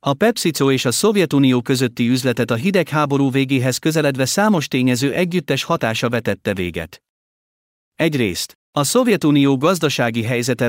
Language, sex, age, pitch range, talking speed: Hungarian, male, 50-69, 115-155 Hz, 125 wpm